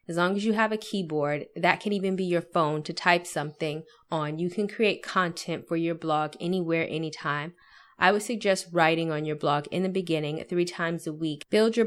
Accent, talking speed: American, 210 wpm